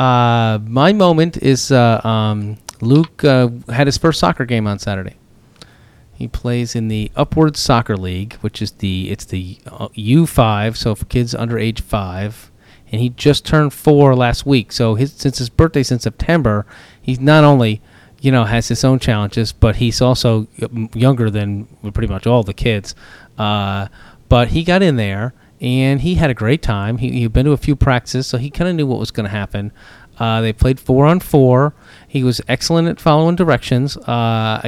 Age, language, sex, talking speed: 30-49, English, male, 190 wpm